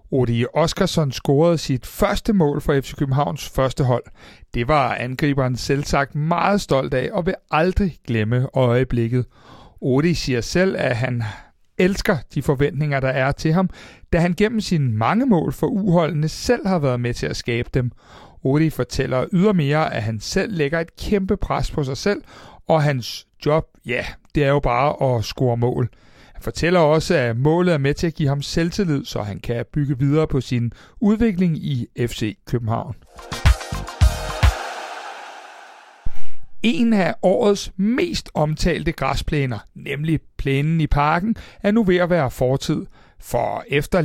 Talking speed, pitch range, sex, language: 160 wpm, 130-185 Hz, male, Danish